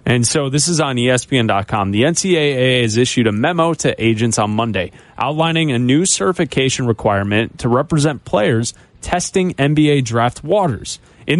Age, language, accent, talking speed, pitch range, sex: 30-49, English, American, 155 wpm, 115-160 Hz, male